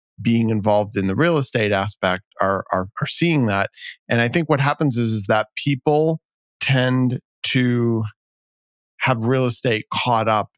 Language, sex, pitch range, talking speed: English, male, 100-120 Hz, 160 wpm